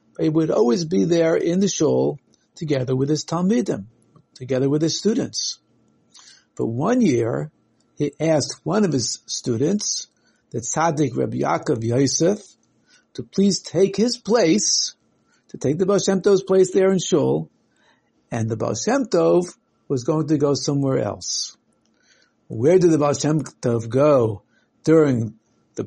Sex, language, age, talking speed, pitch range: male, English, 60-79, 150 wpm, 130-195 Hz